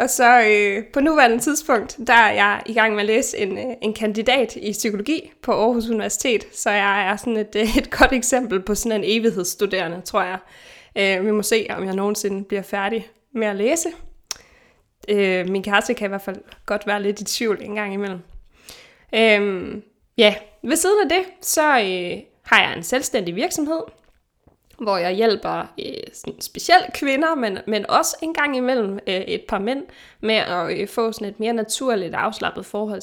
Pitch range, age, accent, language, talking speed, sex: 195-240 Hz, 20-39, native, Danish, 175 wpm, female